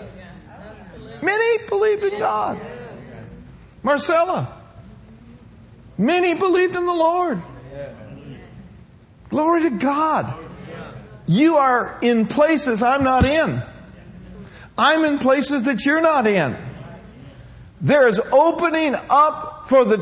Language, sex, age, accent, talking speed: English, male, 50-69, American, 100 wpm